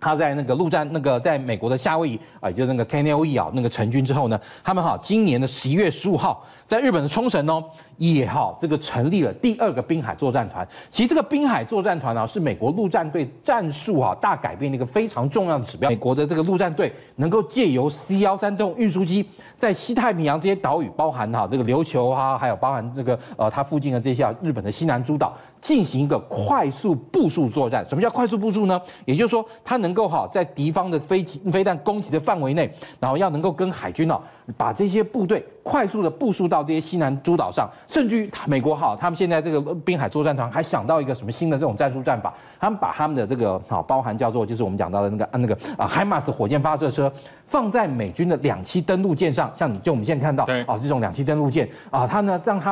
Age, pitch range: 40-59, 140-195 Hz